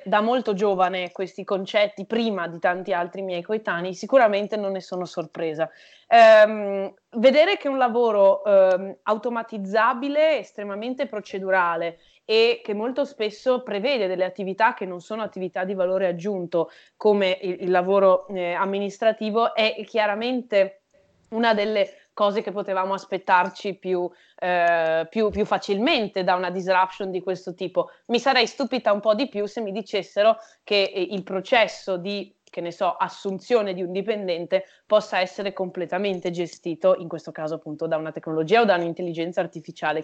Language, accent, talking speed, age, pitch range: Italian, native, 150 wpm, 20-39, 180-220 Hz